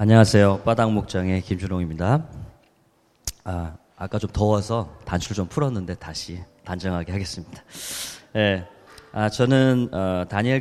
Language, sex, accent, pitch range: Korean, male, native, 90-120 Hz